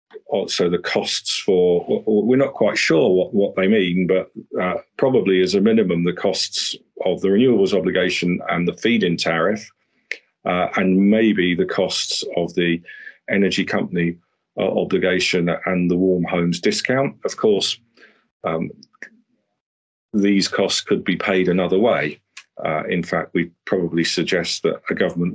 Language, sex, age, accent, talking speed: English, male, 40-59, British, 150 wpm